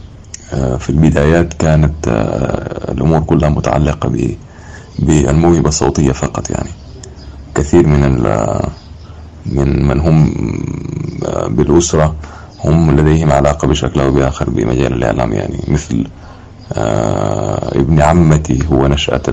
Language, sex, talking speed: English, male, 95 wpm